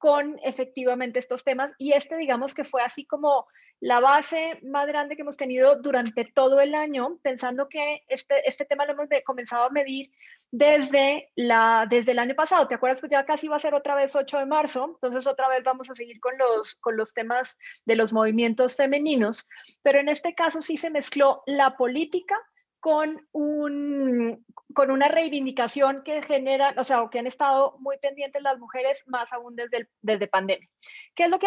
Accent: Colombian